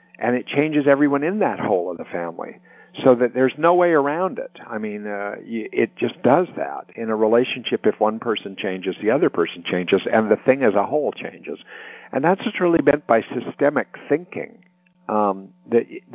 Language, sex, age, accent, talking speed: English, male, 50-69, American, 200 wpm